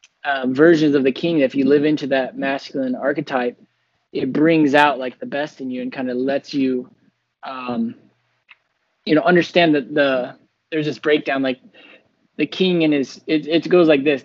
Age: 20-39